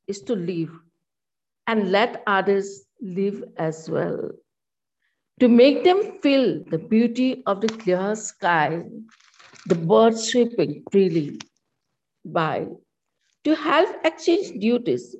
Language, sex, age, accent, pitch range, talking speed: Hindi, female, 60-79, native, 180-250 Hz, 110 wpm